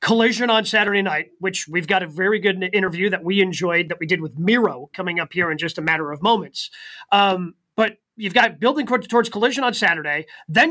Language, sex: English, male